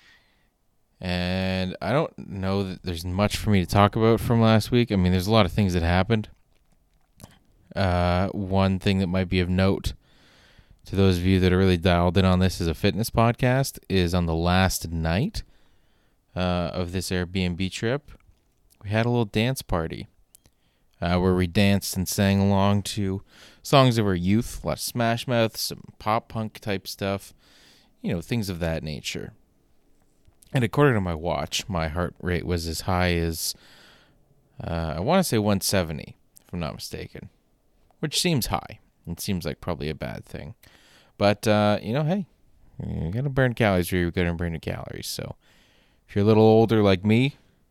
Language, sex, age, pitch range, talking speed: English, male, 20-39, 90-110 Hz, 185 wpm